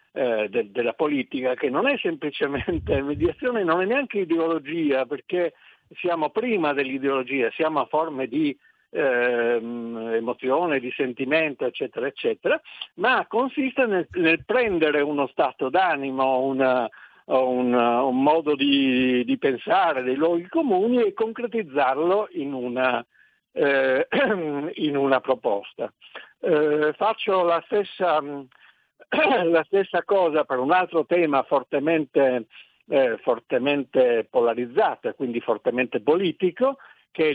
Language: Italian